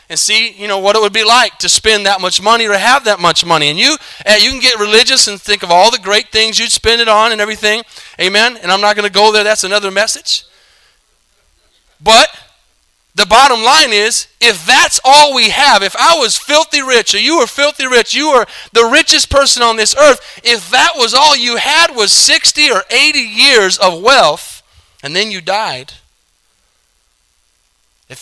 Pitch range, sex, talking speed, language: 150-225 Hz, male, 200 wpm, English